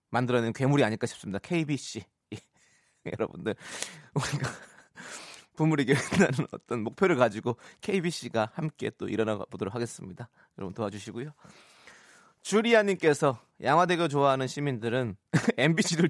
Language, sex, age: Korean, male, 20-39